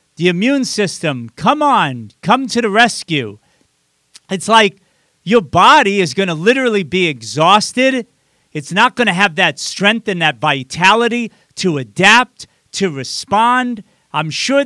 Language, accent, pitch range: English, American, 160-225 Hz